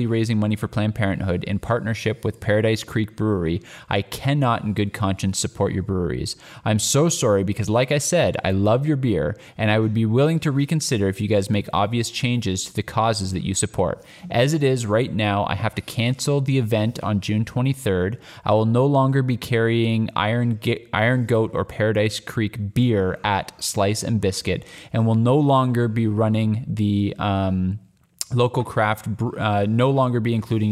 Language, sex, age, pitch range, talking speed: English, male, 20-39, 100-125 Hz, 190 wpm